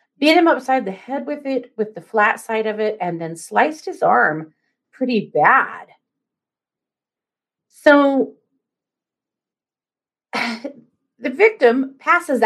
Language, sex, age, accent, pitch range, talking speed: English, female, 30-49, American, 215-300 Hz, 115 wpm